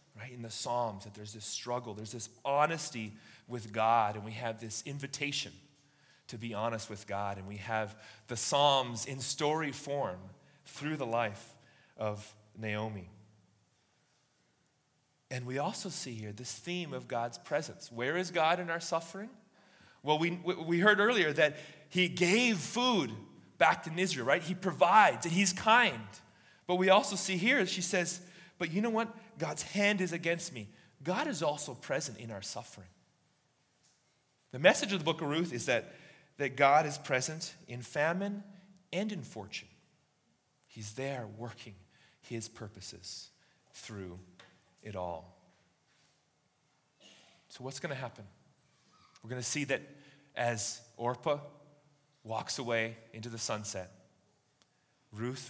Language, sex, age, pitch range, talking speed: English, male, 30-49, 110-165 Hz, 150 wpm